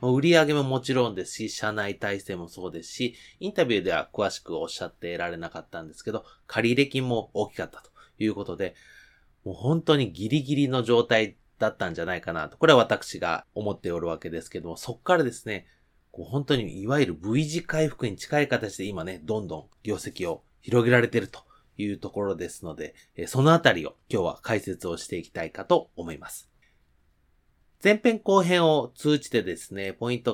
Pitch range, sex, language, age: 95-155 Hz, male, Japanese, 30-49